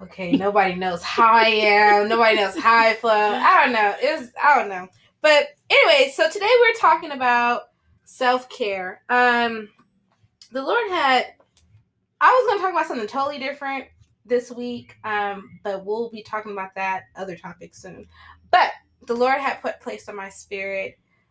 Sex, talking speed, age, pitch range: female, 170 wpm, 20-39, 200-265 Hz